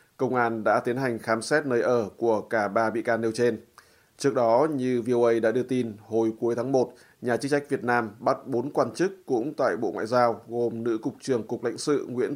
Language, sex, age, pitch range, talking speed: Vietnamese, male, 20-39, 115-125 Hz, 240 wpm